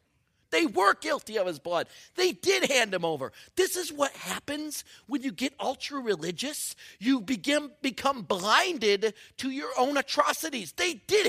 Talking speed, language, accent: 155 wpm, English, American